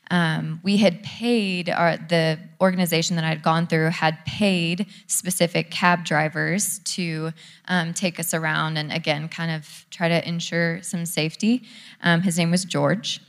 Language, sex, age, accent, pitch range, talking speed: English, female, 20-39, American, 160-180 Hz, 165 wpm